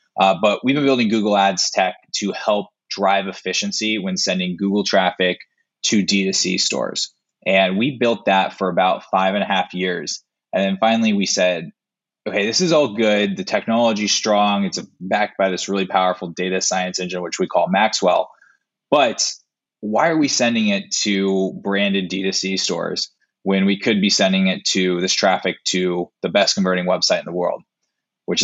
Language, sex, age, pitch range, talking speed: English, male, 20-39, 90-110 Hz, 175 wpm